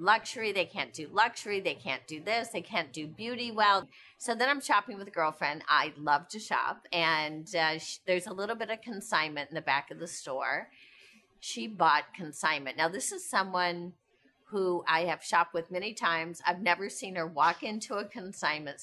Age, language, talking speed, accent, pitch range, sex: 40-59, English, 200 wpm, American, 165-220 Hz, female